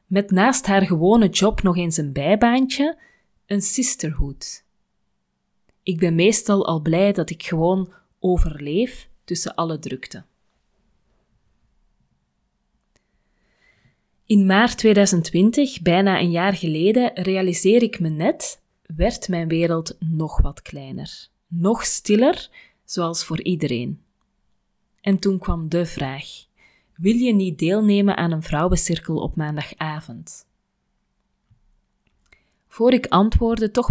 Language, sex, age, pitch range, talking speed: Dutch, female, 20-39, 165-210 Hz, 110 wpm